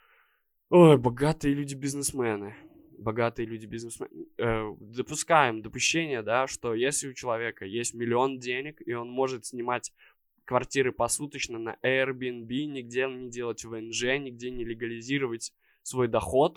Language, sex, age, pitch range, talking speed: Russian, male, 20-39, 120-150 Hz, 120 wpm